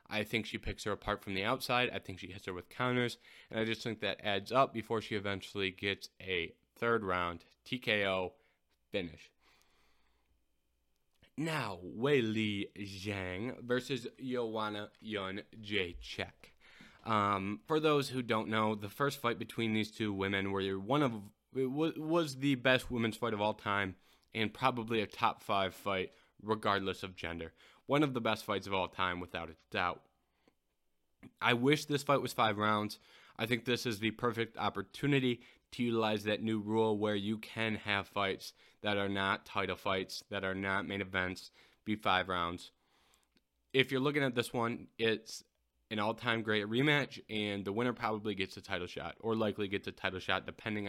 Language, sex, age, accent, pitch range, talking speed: English, male, 20-39, American, 95-115 Hz, 175 wpm